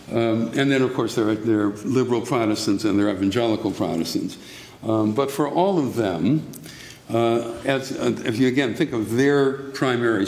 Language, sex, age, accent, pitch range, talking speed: English, male, 60-79, American, 105-125 Hz, 175 wpm